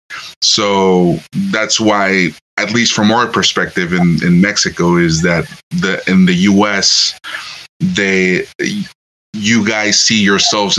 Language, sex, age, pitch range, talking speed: English, male, 30-49, 95-115 Hz, 120 wpm